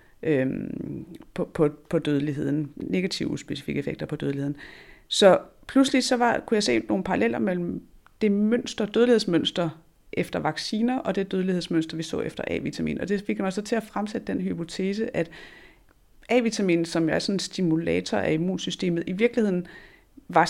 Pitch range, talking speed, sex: 155-215 Hz, 150 wpm, female